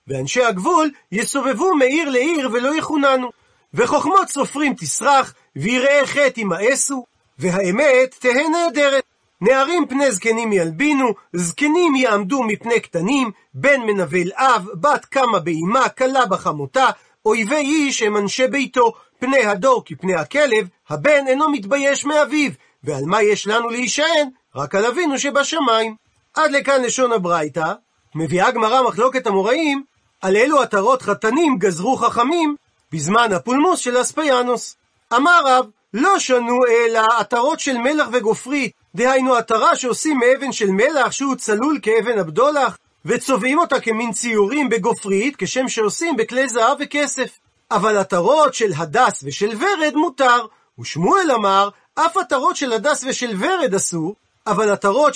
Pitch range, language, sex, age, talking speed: 210-280 Hz, Hebrew, male, 40-59, 130 wpm